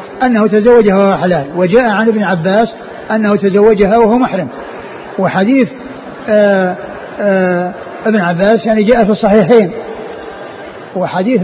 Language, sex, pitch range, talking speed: Arabic, male, 195-230 Hz, 110 wpm